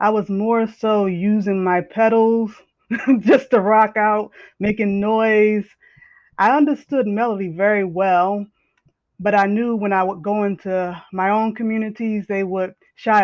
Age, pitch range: 20-39, 180-210 Hz